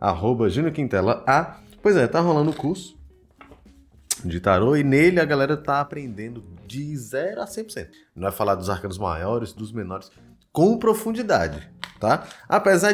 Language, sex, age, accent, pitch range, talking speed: Portuguese, male, 20-39, Brazilian, 100-170 Hz, 155 wpm